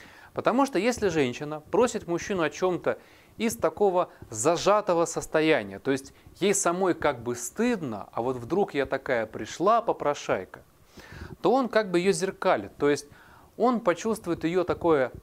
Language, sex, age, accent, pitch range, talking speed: Russian, male, 30-49, native, 125-190 Hz, 150 wpm